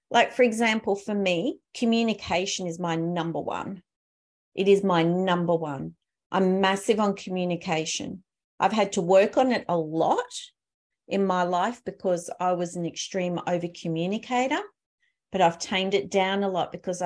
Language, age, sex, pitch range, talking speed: English, 40-59, female, 180-220 Hz, 155 wpm